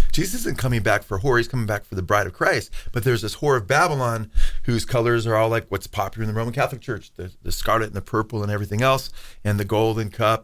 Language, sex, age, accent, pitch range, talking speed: English, male, 40-59, American, 110-125 Hz, 260 wpm